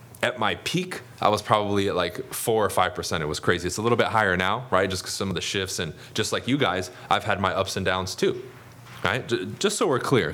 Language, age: English, 20-39